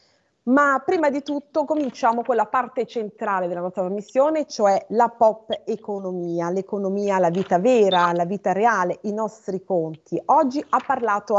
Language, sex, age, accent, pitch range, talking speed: Italian, female, 30-49, native, 185-250 Hz, 155 wpm